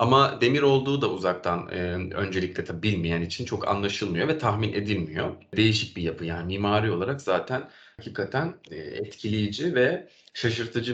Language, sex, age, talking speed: Turkish, male, 30-49, 135 wpm